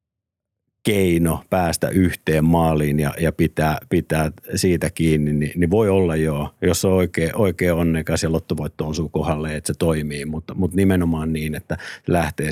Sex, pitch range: male, 80-95 Hz